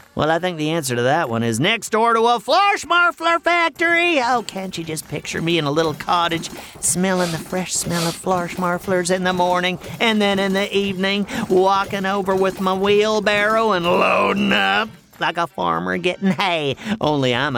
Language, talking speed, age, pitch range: English, 190 wpm, 50-69, 145-215 Hz